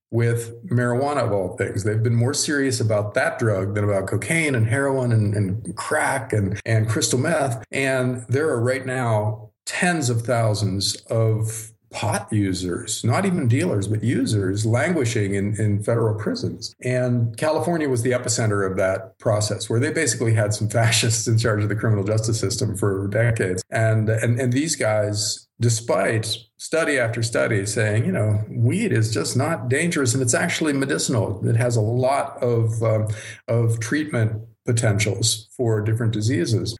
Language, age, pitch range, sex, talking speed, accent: English, 50-69, 105-125 Hz, male, 165 wpm, American